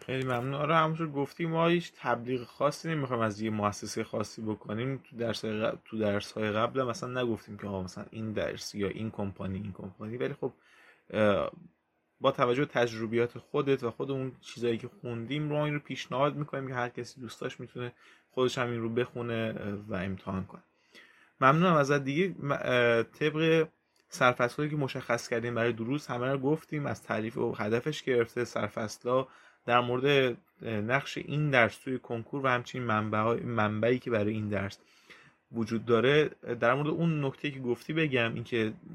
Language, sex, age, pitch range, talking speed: Persian, male, 20-39, 110-135 Hz, 165 wpm